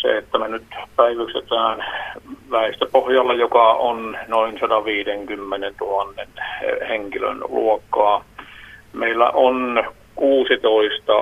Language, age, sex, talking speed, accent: Finnish, 50-69, male, 85 wpm, native